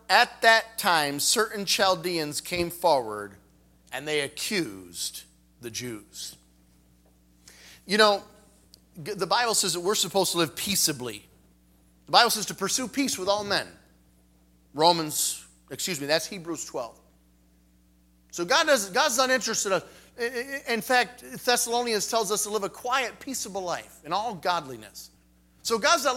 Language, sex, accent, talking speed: English, male, American, 145 wpm